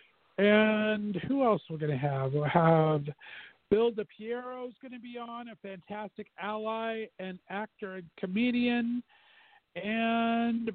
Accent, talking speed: American, 135 wpm